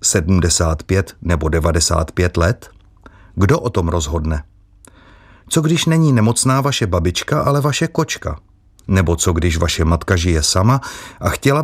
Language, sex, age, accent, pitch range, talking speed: Czech, male, 30-49, native, 90-125 Hz, 135 wpm